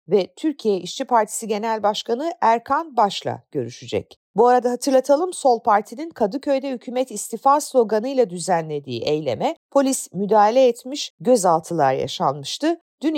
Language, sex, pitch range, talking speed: Turkish, female, 205-290 Hz, 120 wpm